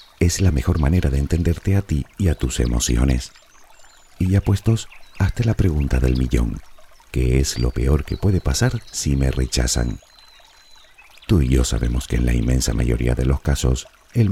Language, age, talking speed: Spanish, 50-69, 180 wpm